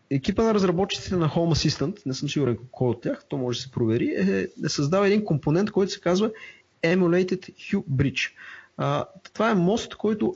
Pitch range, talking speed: 125-175 Hz, 190 wpm